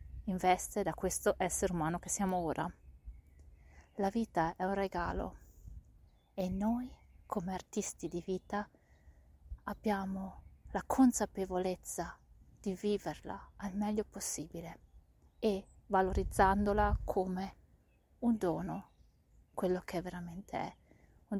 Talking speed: 105 wpm